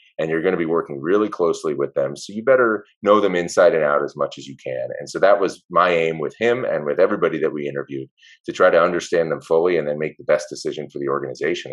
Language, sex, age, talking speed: English, male, 30-49, 265 wpm